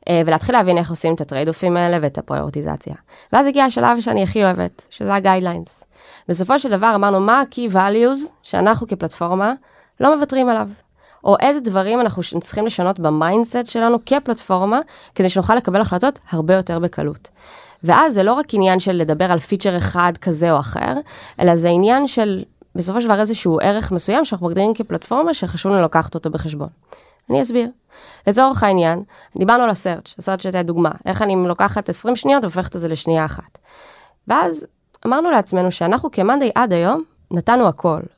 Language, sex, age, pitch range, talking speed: Hebrew, female, 20-39, 170-235 Hz, 160 wpm